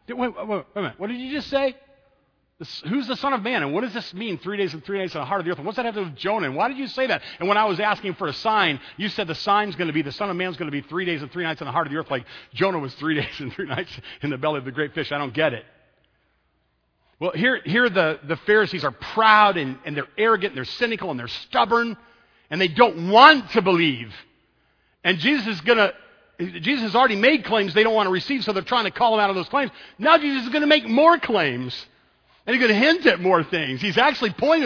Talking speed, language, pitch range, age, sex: 285 wpm, English, 165-250 Hz, 50-69, male